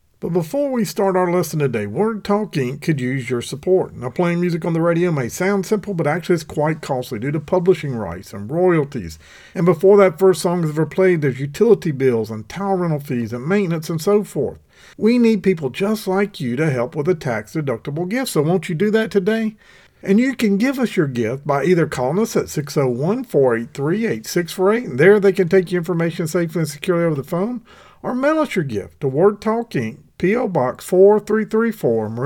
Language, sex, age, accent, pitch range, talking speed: English, male, 50-69, American, 145-200 Hz, 200 wpm